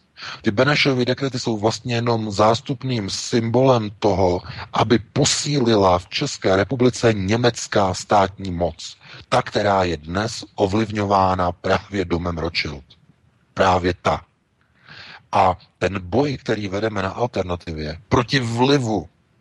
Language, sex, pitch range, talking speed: Czech, male, 95-120 Hz, 110 wpm